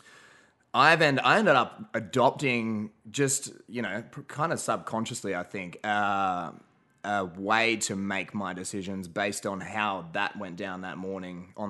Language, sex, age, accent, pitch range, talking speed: English, male, 20-39, Australian, 95-110 Hz, 160 wpm